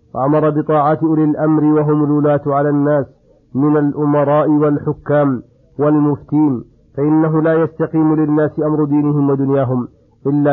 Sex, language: male, Arabic